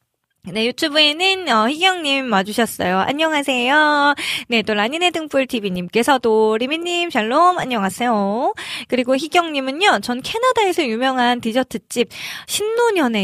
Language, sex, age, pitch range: Korean, female, 20-39, 200-280 Hz